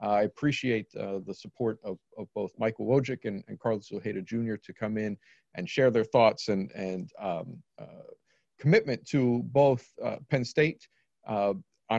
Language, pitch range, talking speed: English, 110-140 Hz, 165 wpm